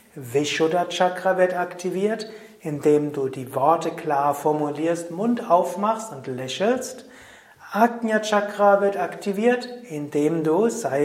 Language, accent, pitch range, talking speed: German, German, 150-200 Hz, 105 wpm